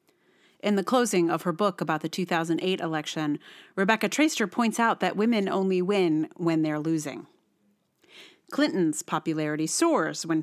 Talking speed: 145 wpm